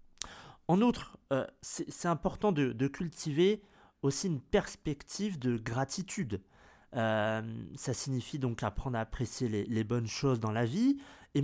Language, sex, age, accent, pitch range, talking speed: French, male, 30-49, French, 125-175 Hz, 150 wpm